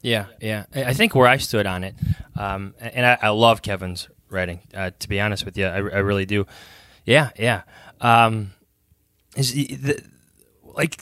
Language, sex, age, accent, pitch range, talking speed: English, male, 20-39, American, 100-140 Hz, 180 wpm